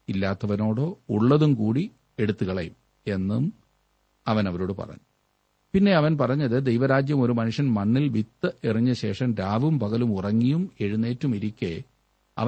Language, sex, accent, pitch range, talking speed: Malayalam, male, native, 110-145 Hz, 110 wpm